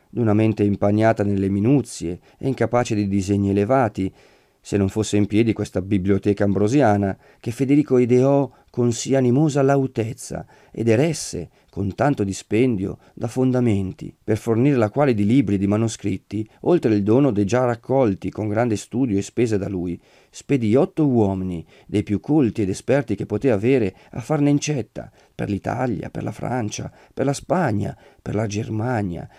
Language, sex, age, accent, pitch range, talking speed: Italian, male, 40-59, native, 100-135 Hz, 160 wpm